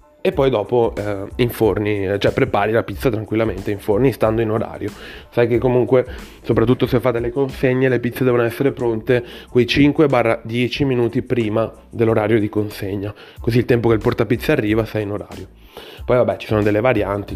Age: 30-49